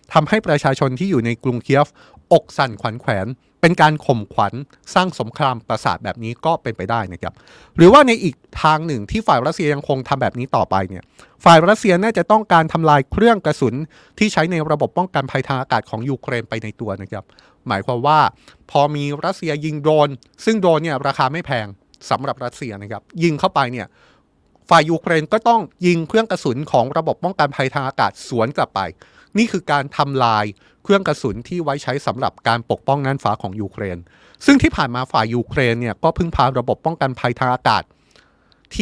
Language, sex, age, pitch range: Thai, male, 20-39, 120-175 Hz